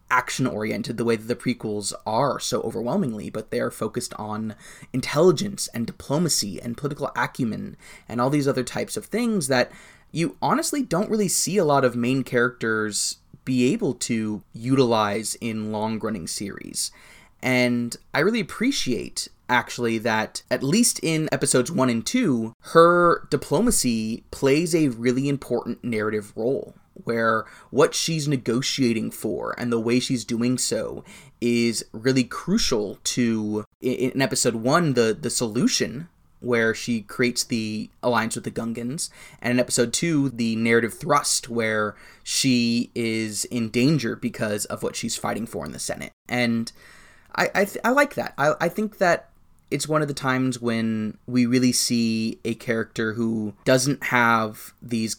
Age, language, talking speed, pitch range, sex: 20-39, English, 155 wpm, 115-145 Hz, male